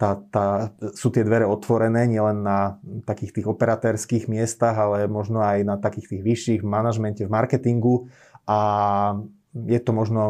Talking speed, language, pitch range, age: 150 wpm, Slovak, 105-125 Hz, 20-39